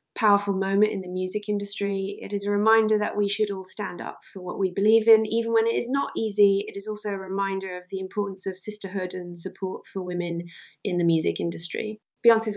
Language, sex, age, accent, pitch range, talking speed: English, female, 20-39, British, 195-215 Hz, 220 wpm